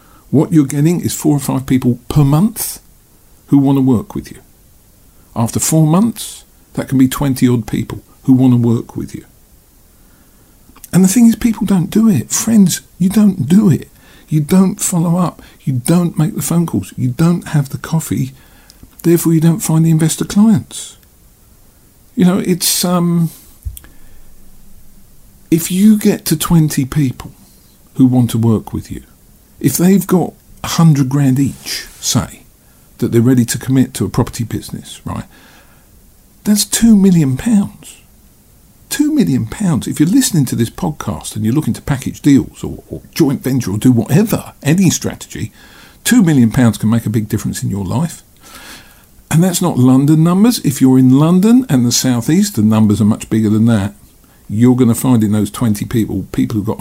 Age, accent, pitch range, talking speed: 50-69, British, 115-170 Hz, 175 wpm